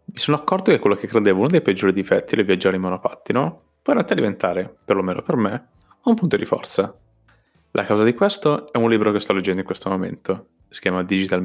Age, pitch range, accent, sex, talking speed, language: 20-39, 95-130 Hz, native, male, 220 wpm, Italian